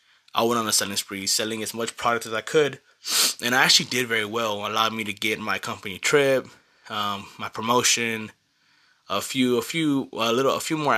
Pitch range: 110-140 Hz